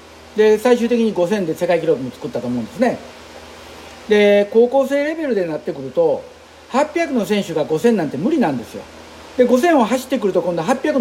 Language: Japanese